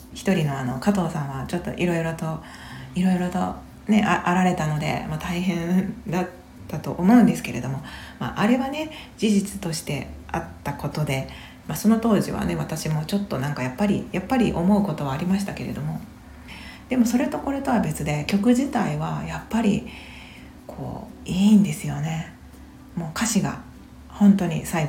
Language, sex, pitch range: Japanese, female, 150-210 Hz